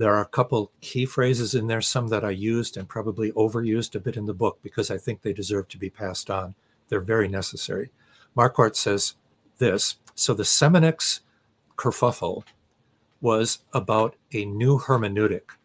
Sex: male